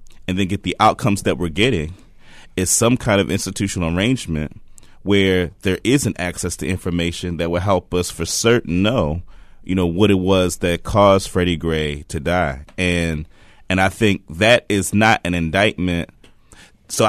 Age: 30-49